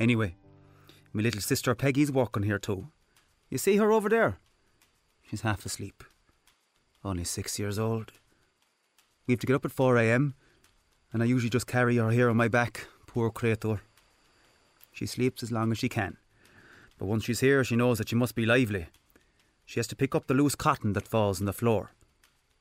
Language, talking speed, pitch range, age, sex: English, 185 wpm, 105-140 Hz, 30-49, male